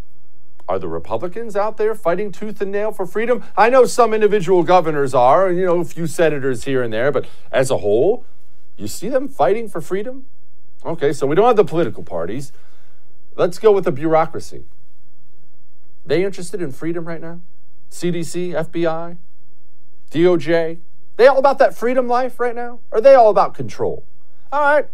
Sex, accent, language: male, American, English